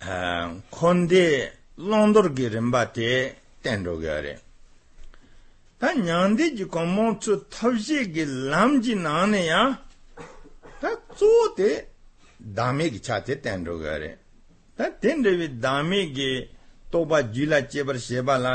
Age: 60-79